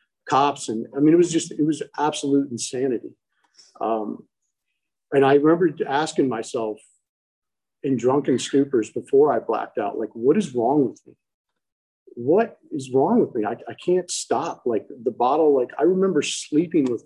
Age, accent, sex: 40-59, American, male